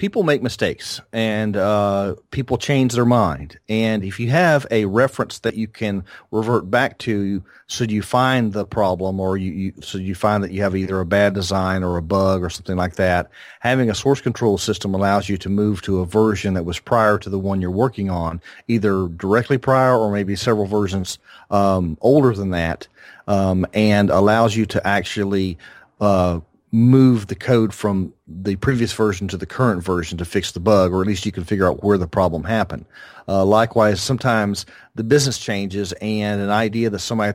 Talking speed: 200 wpm